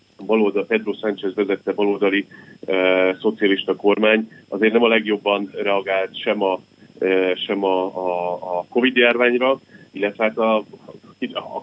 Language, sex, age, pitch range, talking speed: Hungarian, male, 30-49, 95-110 Hz, 130 wpm